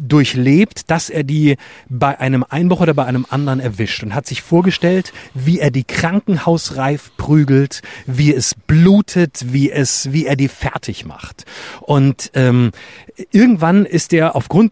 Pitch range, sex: 135-185 Hz, male